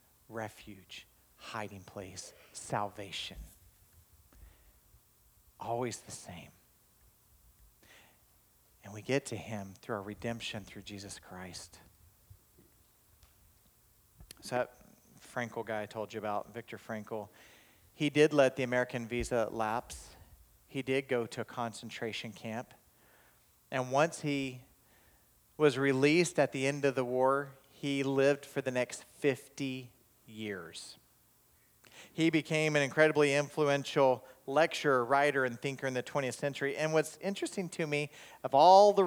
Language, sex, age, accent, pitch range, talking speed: English, male, 40-59, American, 105-145 Hz, 125 wpm